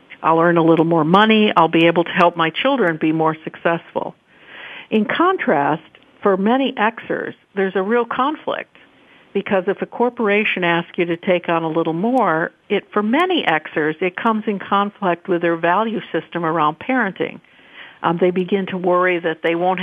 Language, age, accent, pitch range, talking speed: English, 50-69, American, 165-205 Hz, 180 wpm